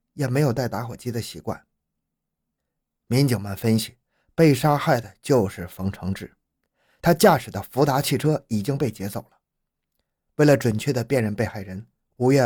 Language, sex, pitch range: Chinese, male, 115-150 Hz